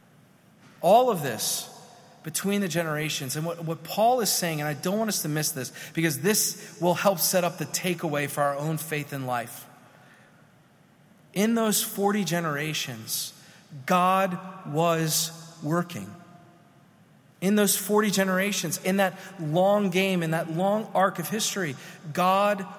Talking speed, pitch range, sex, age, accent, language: 145 wpm, 140-185 Hz, male, 40-59, American, English